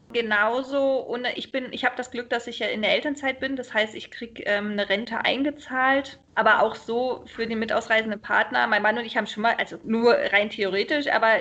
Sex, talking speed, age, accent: female, 215 wpm, 20-39, German